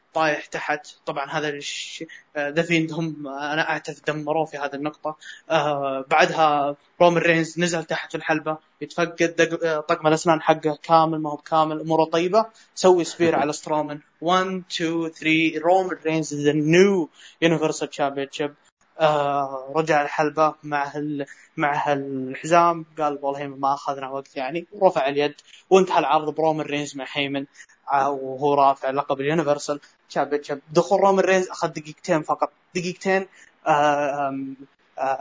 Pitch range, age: 145-175 Hz, 20-39